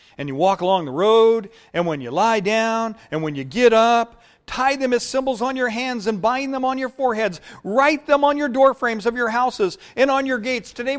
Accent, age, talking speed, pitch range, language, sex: American, 40-59, 235 wpm, 175-250 Hz, English, male